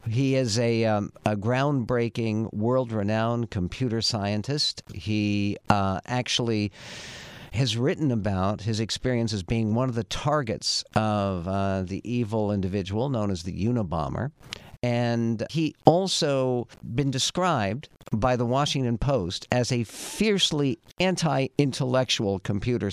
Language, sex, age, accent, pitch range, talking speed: English, male, 50-69, American, 105-135 Hz, 120 wpm